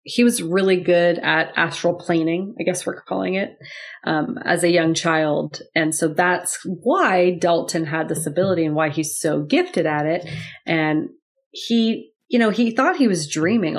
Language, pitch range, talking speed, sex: English, 160-190 Hz, 180 wpm, female